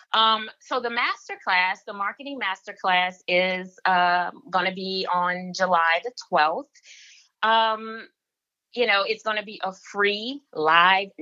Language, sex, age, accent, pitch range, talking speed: English, female, 20-39, American, 165-210 Hz, 135 wpm